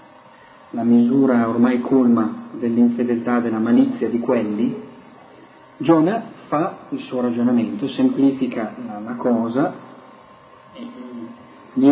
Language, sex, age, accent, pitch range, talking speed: Italian, male, 40-59, native, 120-200 Hz, 95 wpm